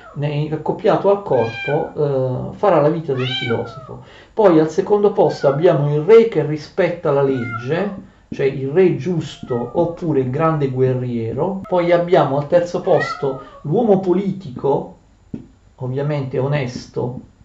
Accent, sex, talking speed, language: native, male, 125 wpm, Italian